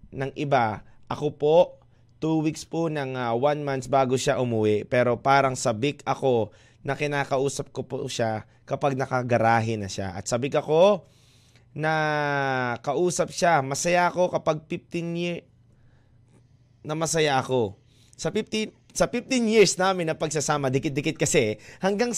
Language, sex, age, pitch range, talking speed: Filipino, male, 20-39, 125-165 Hz, 140 wpm